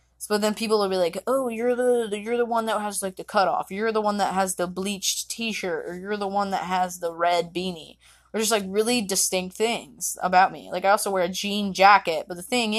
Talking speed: 245 wpm